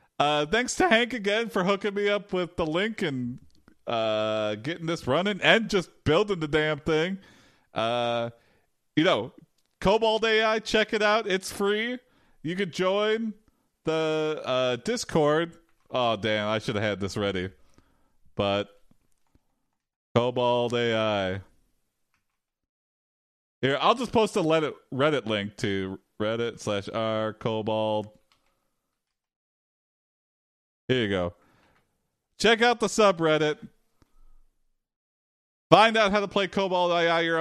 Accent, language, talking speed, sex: American, English, 125 wpm, male